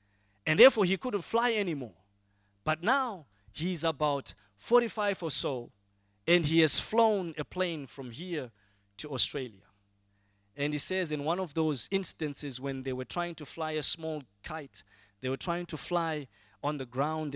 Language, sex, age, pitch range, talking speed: English, male, 20-39, 100-160 Hz, 165 wpm